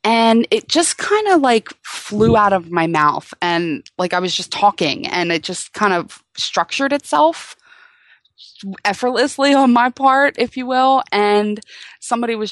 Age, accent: 20-39, American